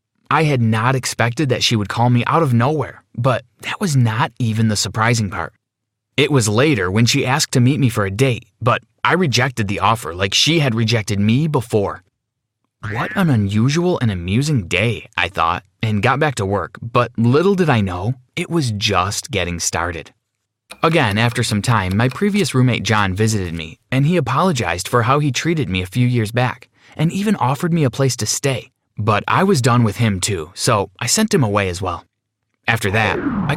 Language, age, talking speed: English, 20-39, 200 wpm